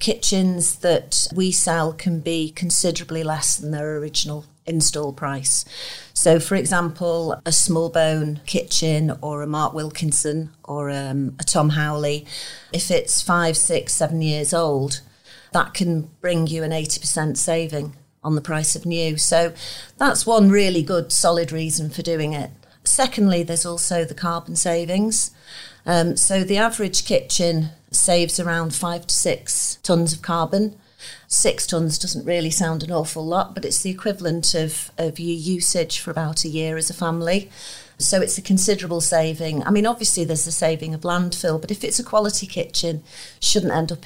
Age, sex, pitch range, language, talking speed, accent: 40-59, female, 160-185 Hz, English, 165 wpm, British